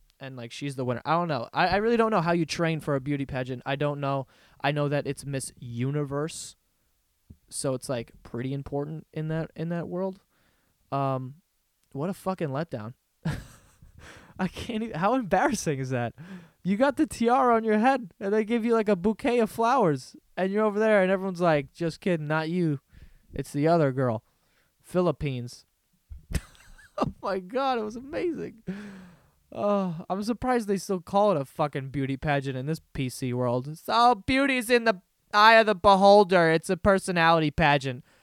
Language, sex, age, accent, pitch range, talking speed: English, male, 20-39, American, 135-190 Hz, 180 wpm